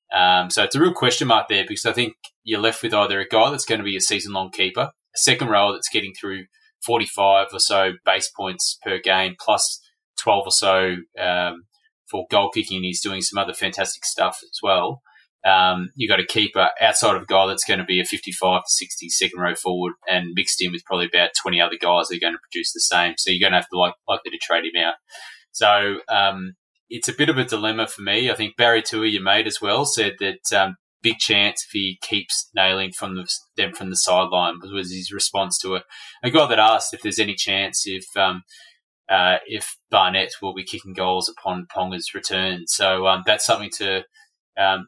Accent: Australian